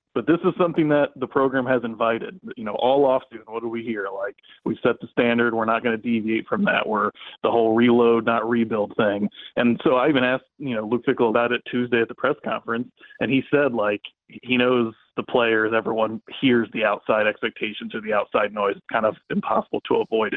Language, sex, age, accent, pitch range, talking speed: English, male, 30-49, American, 115-130 Hz, 225 wpm